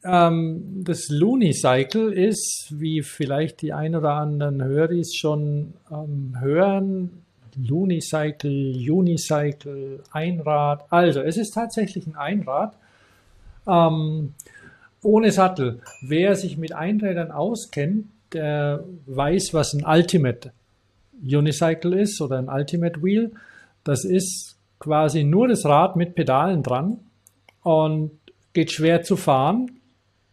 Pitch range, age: 135-175 Hz, 50-69